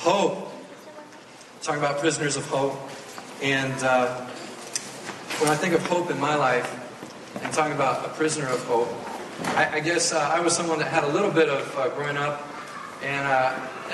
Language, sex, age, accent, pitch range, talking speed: English, male, 40-59, American, 140-160 Hz, 175 wpm